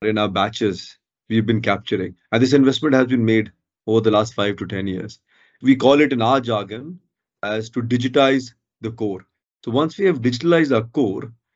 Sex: male